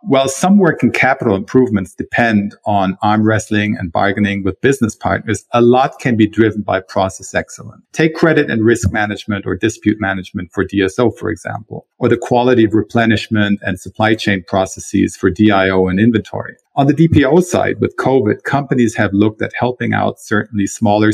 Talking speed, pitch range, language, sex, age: 175 wpm, 100-120 Hz, English, male, 50-69